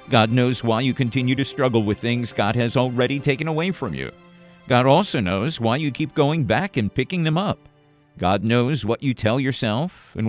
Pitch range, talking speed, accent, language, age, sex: 115-155 Hz, 205 wpm, American, English, 50-69, male